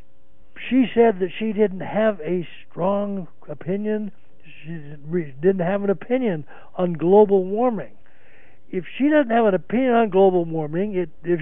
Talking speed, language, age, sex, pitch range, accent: 145 wpm, English, 60-79, male, 150-200 Hz, American